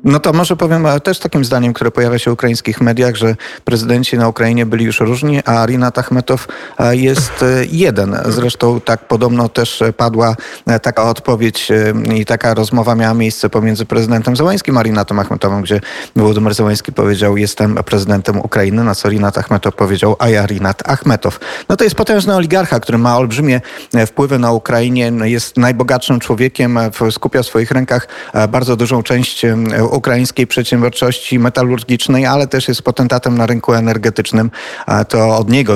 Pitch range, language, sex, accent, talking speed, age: 115-130 Hz, Polish, male, native, 155 wpm, 30-49